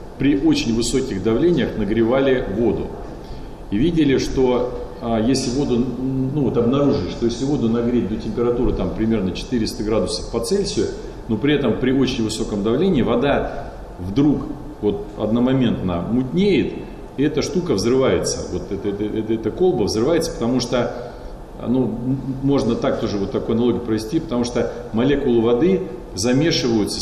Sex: male